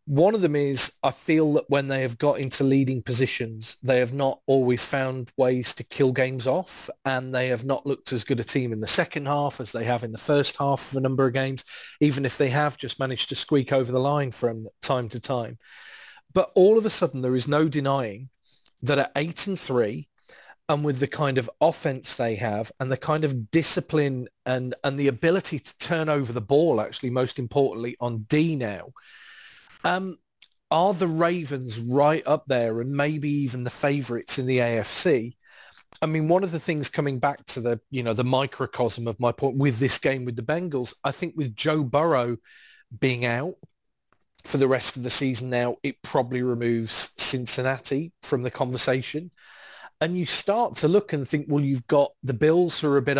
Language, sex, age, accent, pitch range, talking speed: English, male, 30-49, British, 125-150 Hz, 205 wpm